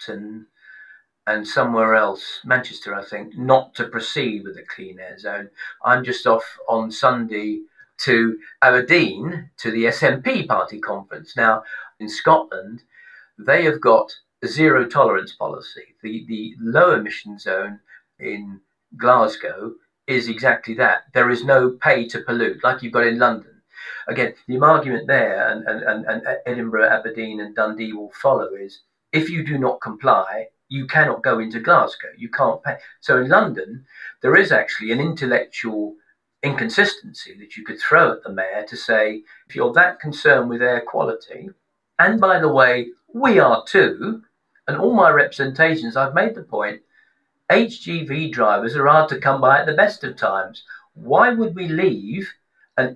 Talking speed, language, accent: 160 wpm, English, British